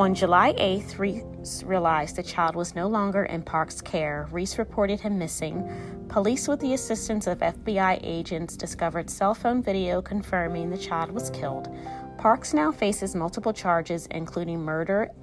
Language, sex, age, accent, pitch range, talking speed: English, female, 30-49, American, 160-200 Hz, 160 wpm